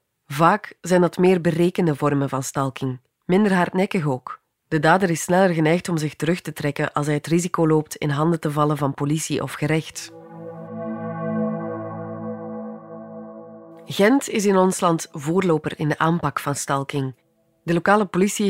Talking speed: 155 wpm